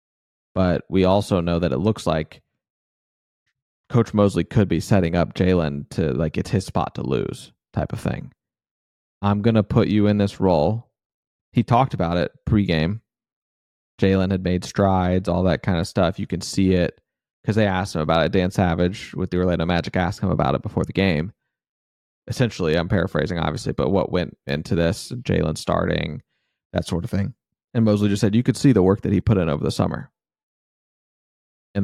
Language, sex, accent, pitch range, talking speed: English, male, American, 85-100 Hz, 190 wpm